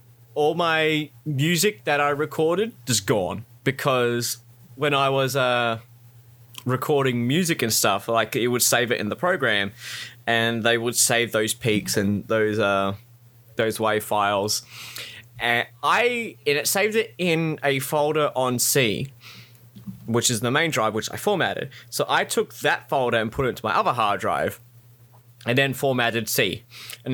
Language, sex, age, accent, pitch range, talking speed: English, male, 20-39, Australian, 120-145 Hz, 165 wpm